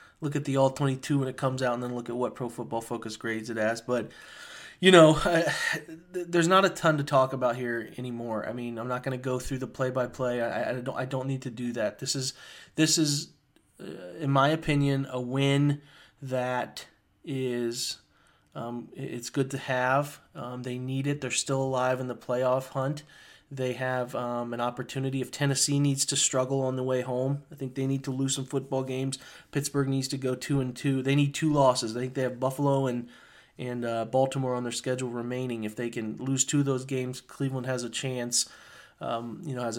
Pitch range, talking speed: 125-140 Hz, 215 wpm